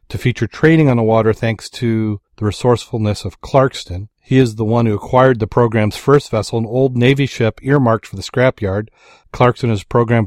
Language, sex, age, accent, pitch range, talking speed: English, male, 40-59, American, 105-120 Hz, 200 wpm